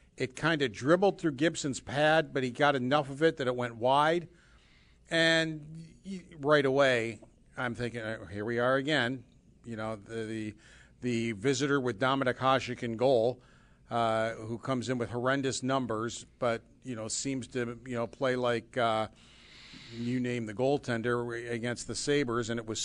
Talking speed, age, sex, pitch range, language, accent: 165 wpm, 50-69, male, 120-155 Hz, English, American